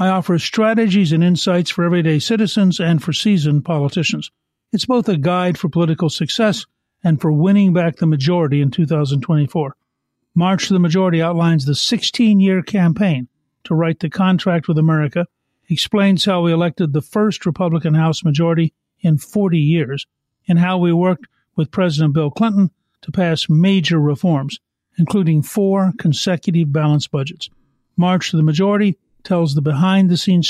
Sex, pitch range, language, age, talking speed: male, 155-185 Hz, English, 50-69, 150 wpm